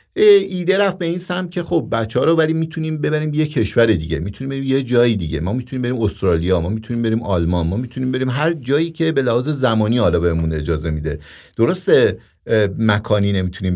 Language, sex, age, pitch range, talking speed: English, male, 50-69, 110-155 Hz, 190 wpm